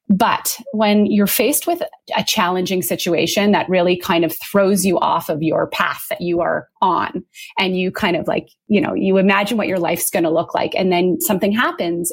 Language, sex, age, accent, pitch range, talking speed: English, female, 30-49, American, 170-220 Hz, 210 wpm